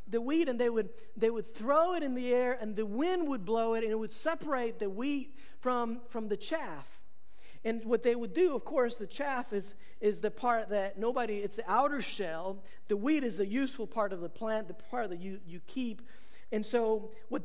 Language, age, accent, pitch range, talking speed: English, 50-69, American, 215-300 Hz, 225 wpm